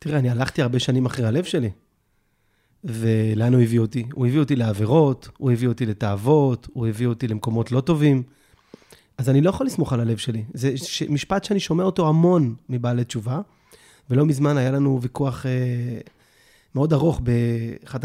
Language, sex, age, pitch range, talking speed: Hebrew, male, 30-49, 115-155 Hz, 170 wpm